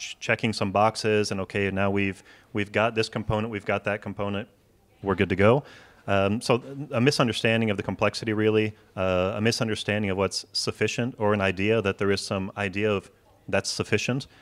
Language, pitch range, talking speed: Dutch, 95-110 Hz, 185 wpm